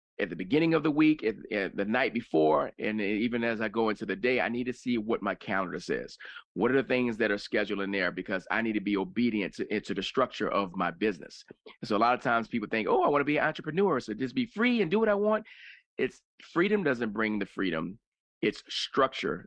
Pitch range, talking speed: 100-130 Hz, 250 wpm